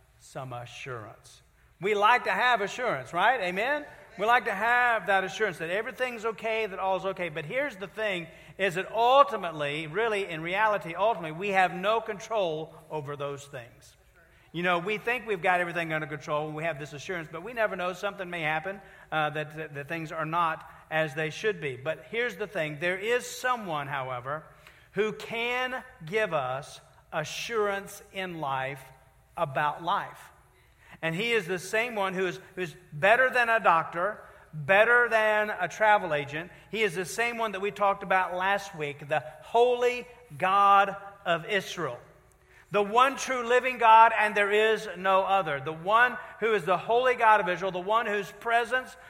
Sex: male